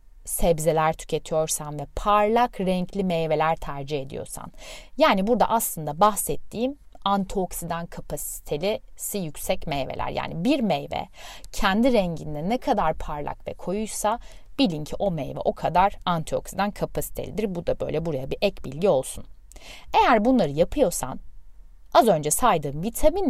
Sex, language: female, Turkish